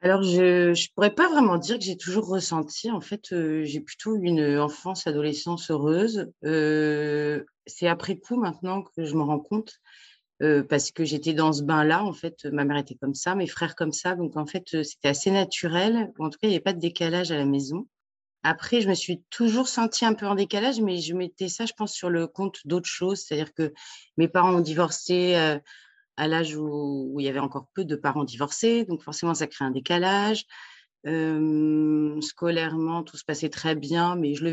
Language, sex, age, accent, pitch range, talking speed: French, female, 30-49, French, 155-190 Hz, 210 wpm